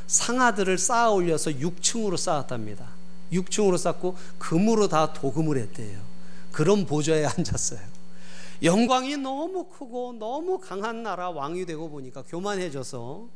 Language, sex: Korean, male